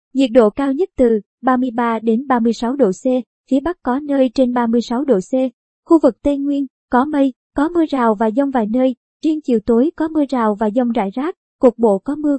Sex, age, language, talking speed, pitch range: male, 20-39, Vietnamese, 220 wpm, 235-280 Hz